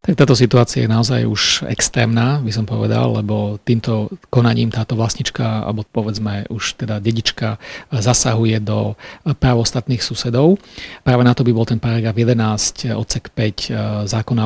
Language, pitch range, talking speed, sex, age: Slovak, 115-130 Hz, 145 wpm, male, 40-59